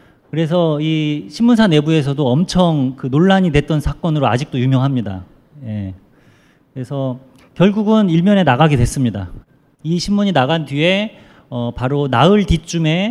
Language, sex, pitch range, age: Korean, male, 130-175 Hz, 40-59